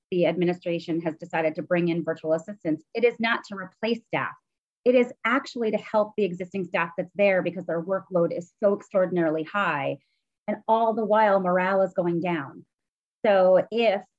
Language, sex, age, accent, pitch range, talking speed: English, female, 30-49, American, 175-215 Hz, 180 wpm